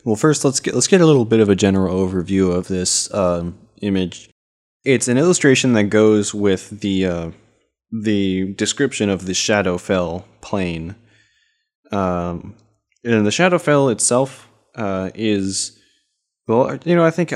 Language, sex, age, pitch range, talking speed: English, male, 20-39, 95-115 Hz, 150 wpm